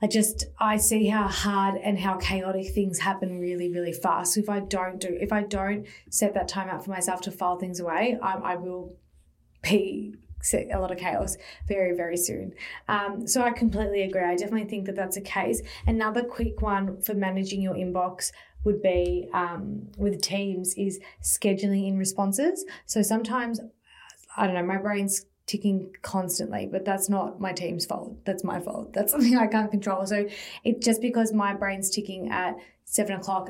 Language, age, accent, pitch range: English, 20-39, Australian, 185-215 Hz